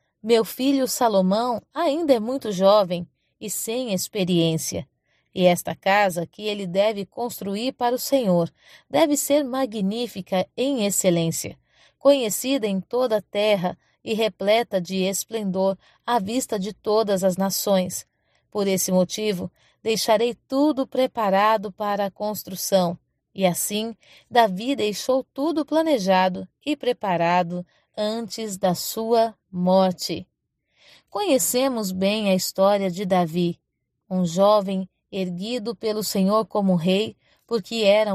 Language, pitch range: Portuguese, 185-235 Hz